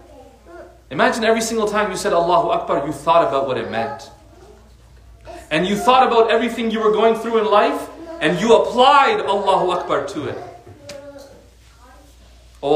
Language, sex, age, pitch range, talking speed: English, male, 30-49, 150-230 Hz, 155 wpm